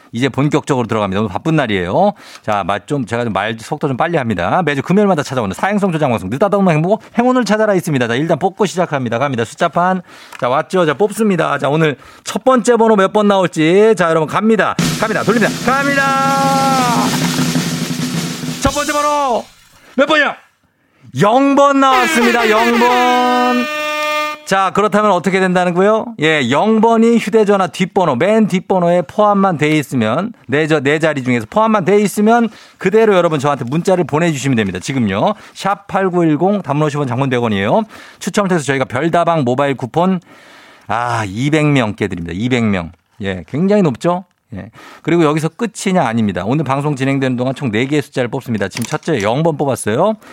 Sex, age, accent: male, 40-59, native